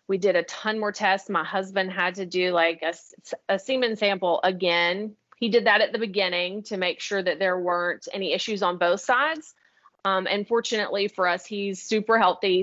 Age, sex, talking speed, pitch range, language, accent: 30-49, female, 200 wpm, 175-205 Hz, English, American